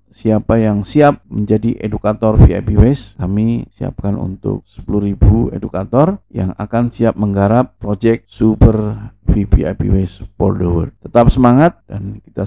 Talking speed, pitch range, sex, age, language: 130 wpm, 95-115 Hz, male, 50-69, Indonesian